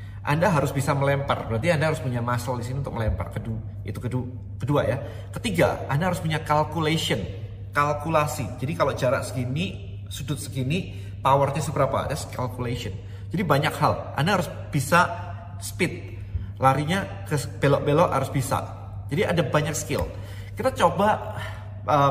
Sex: male